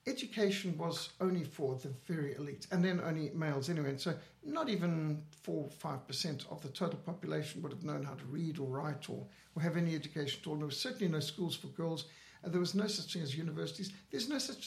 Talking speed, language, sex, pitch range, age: 230 wpm, English, male, 160-200 Hz, 60-79